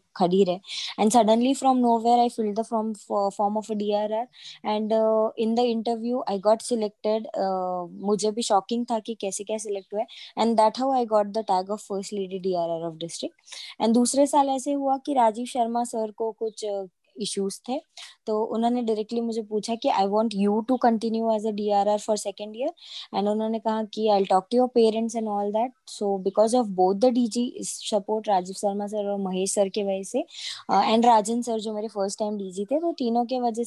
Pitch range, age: 210-245 Hz, 20-39